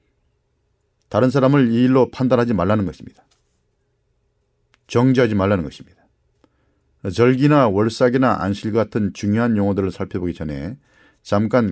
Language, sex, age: Korean, male, 40-59